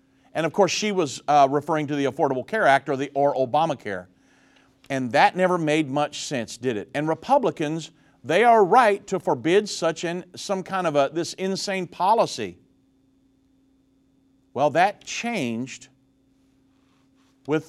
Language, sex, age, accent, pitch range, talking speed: English, male, 50-69, American, 135-190 Hz, 145 wpm